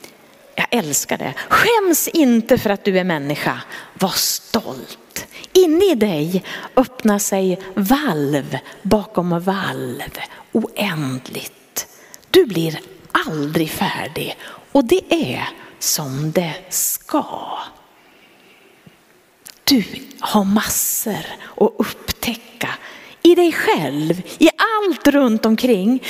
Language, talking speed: Swedish, 100 wpm